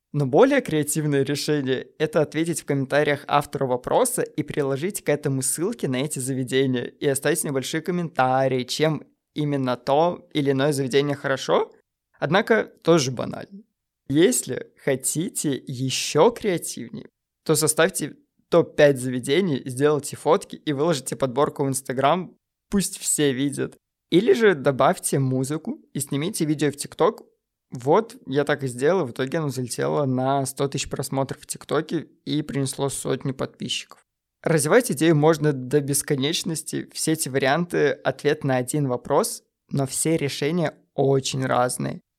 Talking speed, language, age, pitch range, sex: 135 wpm, Russian, 20-39, 135-160 Hz, male